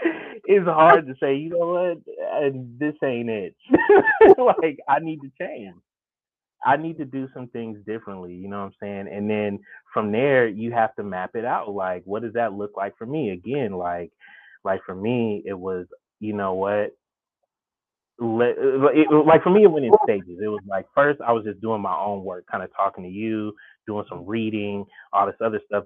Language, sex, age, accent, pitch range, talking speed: English, male, 20-39, American, 100-140 Hz, 195 wpm